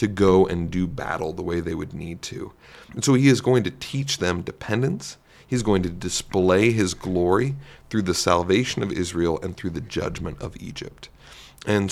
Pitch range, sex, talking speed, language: 90-105 Hz, male, 190 wpm, English